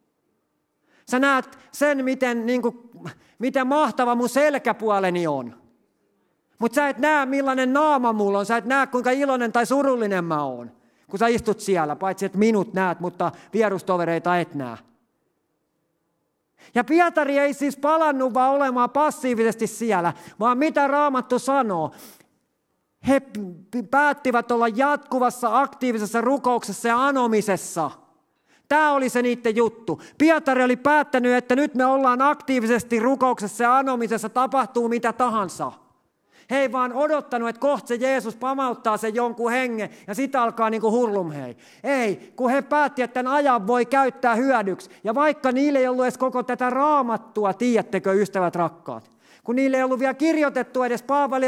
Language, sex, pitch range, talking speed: Finnish, male, 215-270 Hz, 150 wpm